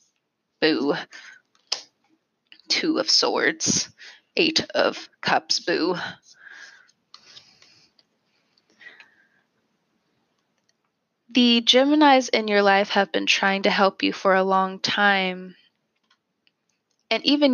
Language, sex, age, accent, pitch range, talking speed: English, female, 20-39, American, 195-275 Hz, 85 wpm